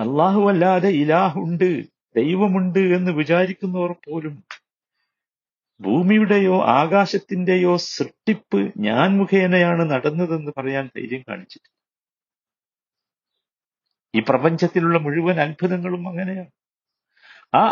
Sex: male